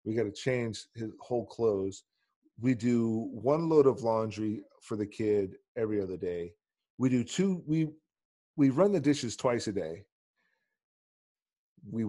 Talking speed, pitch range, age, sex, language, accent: 155 wpm, 100-130 Hz, 40-59, male, English, American